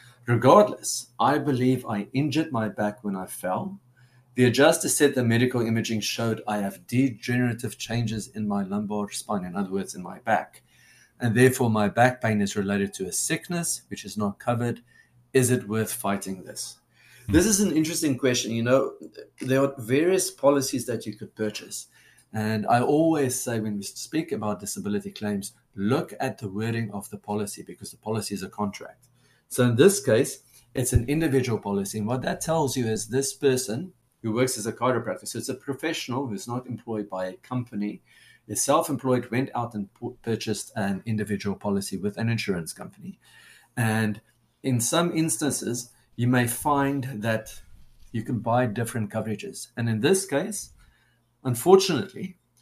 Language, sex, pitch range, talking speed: English, male, 105-130 Hz, 170 wpm